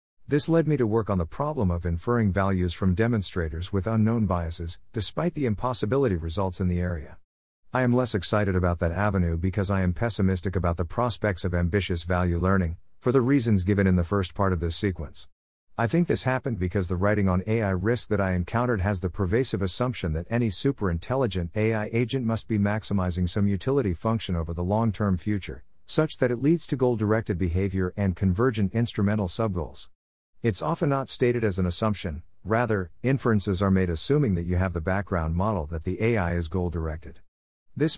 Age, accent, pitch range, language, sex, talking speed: 50-69, American, 90-115 Hz, English, male, 190 wpm